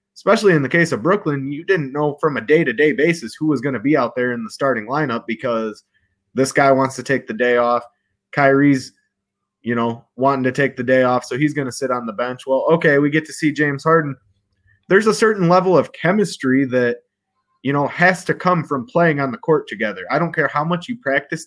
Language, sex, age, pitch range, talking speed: English, male, 20-39, 125-165 Hz, 240 wpm